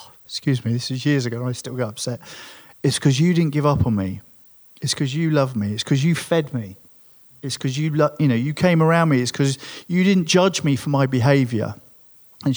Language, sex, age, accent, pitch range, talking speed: English, male, 40-59, British, 125-160 Hz, 235 wpm